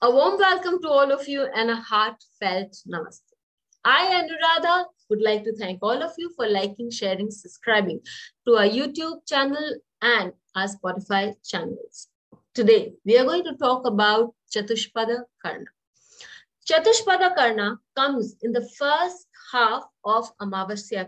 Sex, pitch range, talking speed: female, 215-285 Hz, 140 wpm